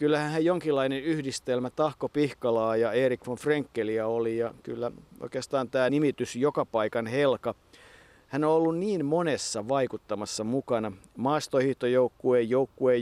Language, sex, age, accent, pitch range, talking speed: Finnish, male, 50-69, native, 115-135 Hz, 125 wpm